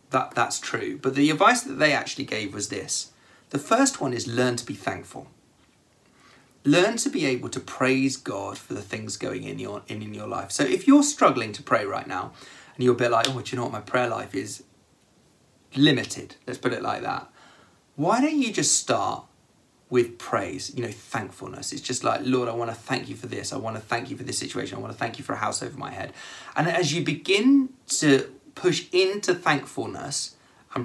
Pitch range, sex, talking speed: 115-155 Hz, male, 220 wpm